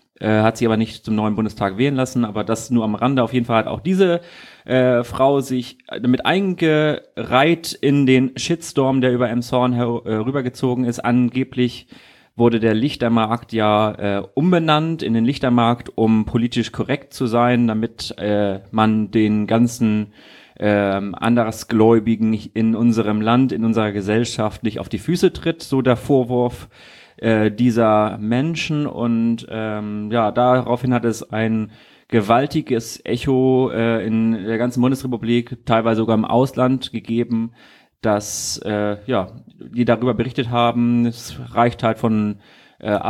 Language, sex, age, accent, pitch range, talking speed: German, male, 30-49, German, 110-125 Hz, 140 wpm